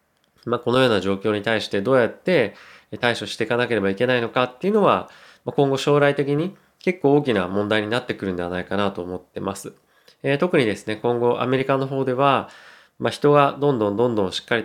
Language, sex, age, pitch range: Japanese, male, 20-39, 100-130 Hz